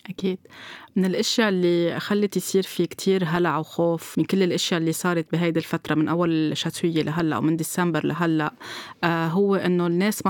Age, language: 20-39, Arabic